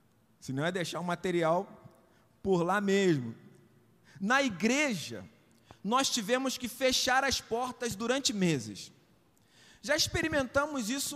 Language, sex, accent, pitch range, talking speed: Portuguese, male, Brazilian, 200-265 Hz, 120 wpm